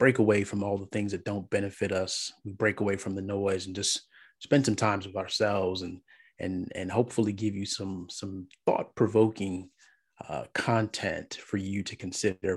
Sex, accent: male, American